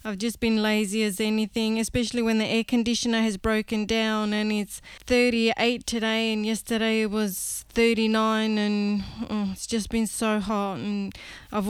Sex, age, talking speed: female, 20-39, 165 wpm